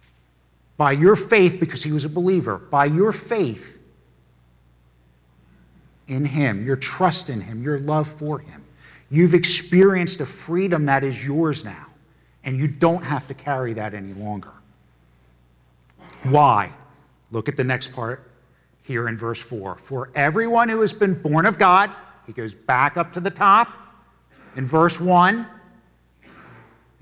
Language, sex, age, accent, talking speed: English, male, 50-69, American, 145 wpm